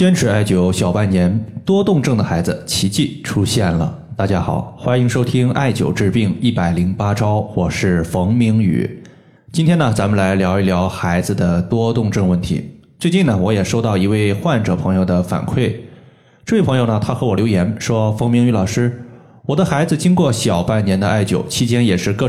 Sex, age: male, 20-39